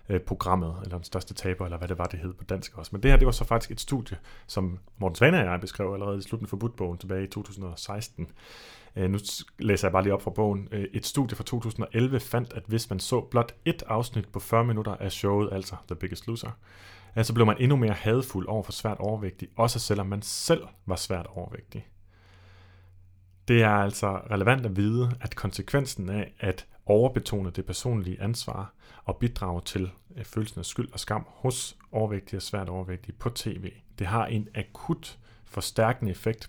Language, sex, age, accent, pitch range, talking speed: Danish, male, 30-49, native, 95-115 Hz, 195 wpm